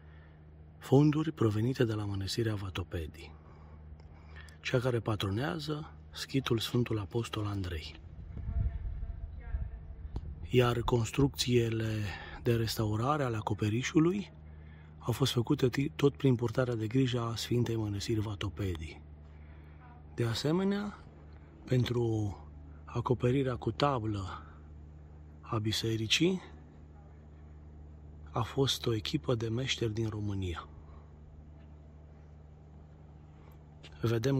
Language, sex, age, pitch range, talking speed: Romanian, male, 30-49, 75-120 Hz, 85 wpm